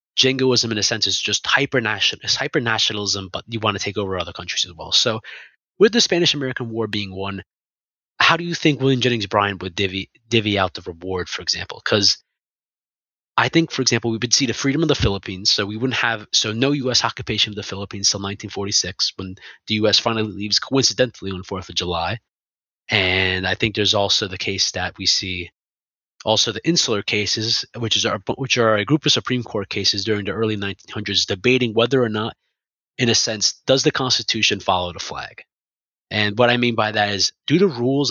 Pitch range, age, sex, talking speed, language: 95-120 Hz, 20-39, male, 205 wpm, English